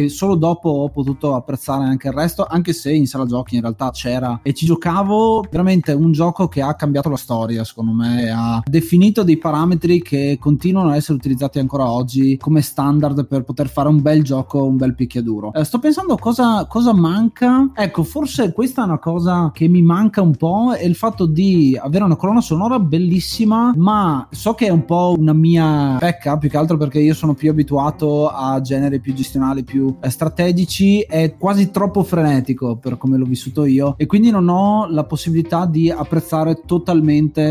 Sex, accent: male, native